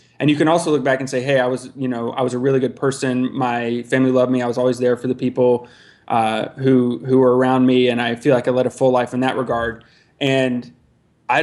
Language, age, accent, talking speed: English, 20-39, American, 265 wpm